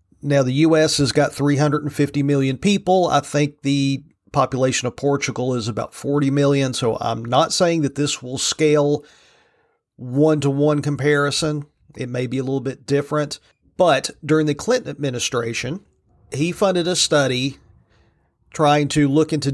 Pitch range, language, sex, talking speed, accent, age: 125-150 Hz, English, male, 145 wpm, American, 40-59